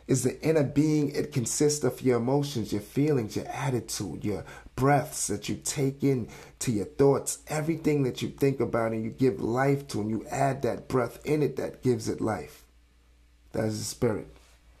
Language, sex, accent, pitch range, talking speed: English, male, American, 105-140 Hz, 190 wpm